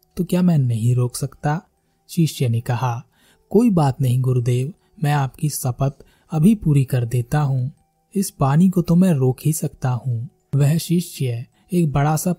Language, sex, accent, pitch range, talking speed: Hindi, male, native, 130-165 Hz, 170 wpm